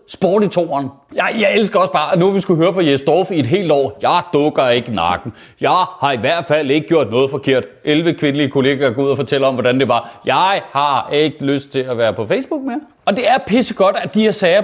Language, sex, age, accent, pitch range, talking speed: Danish, male, 30-49, native, 165-235 Hz, 255 wpm